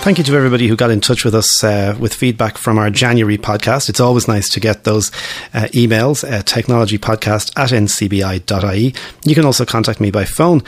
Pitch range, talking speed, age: 105-125 Hz, 210 wpm, 30-49